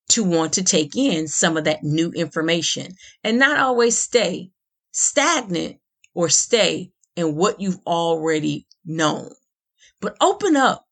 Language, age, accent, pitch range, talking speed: English, 30-49, American, 170-240 Hz, 135 wpm